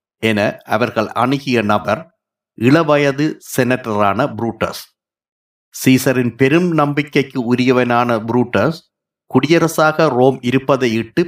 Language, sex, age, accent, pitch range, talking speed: Tamil, male, 50-69, native, 115-145 Hz, 85 wpm